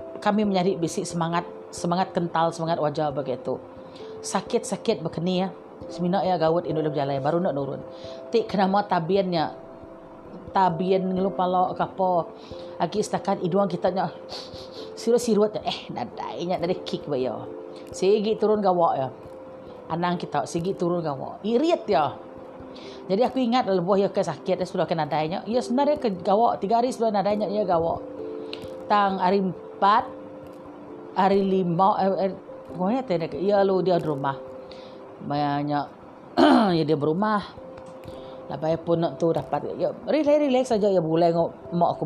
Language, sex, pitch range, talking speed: Malay, female, 140-195 Hz, 140 wpm